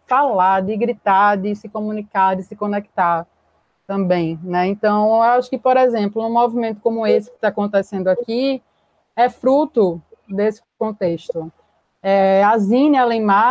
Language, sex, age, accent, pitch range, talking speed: Portuguese, female, 20-39, Brazilian, 205-260 Hz, 145 wpm